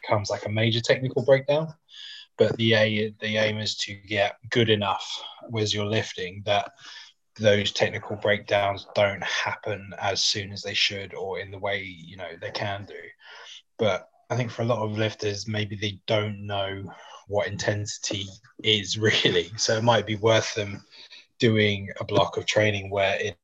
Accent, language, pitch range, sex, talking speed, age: British, English, 100-115 Hz, male, 170 wpm, 20-39